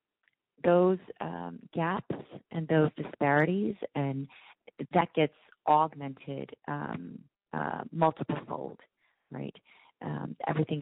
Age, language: 30-49, English